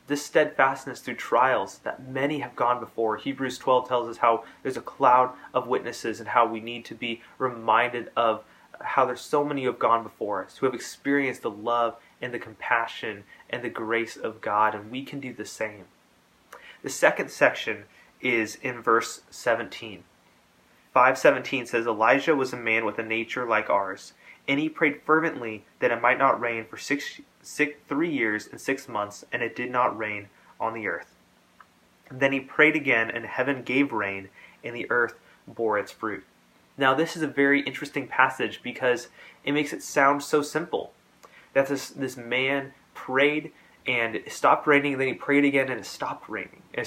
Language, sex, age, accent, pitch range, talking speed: English, male, 20-39, American, 115-145 Hz, 190 wpm